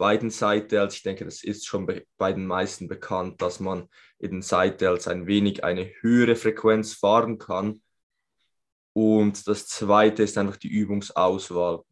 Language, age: German, 20-39